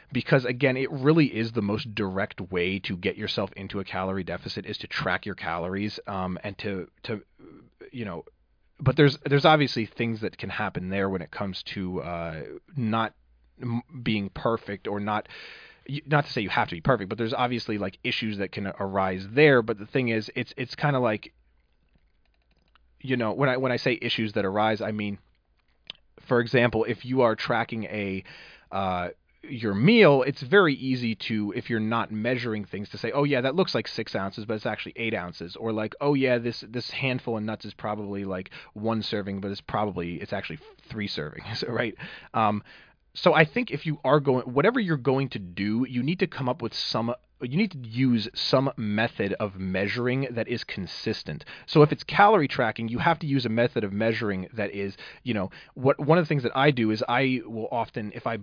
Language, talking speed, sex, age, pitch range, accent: English, 205 wpm, male, 30-49, 100-130 Hz, American